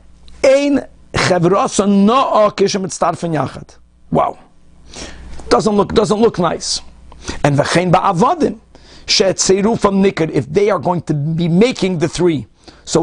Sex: male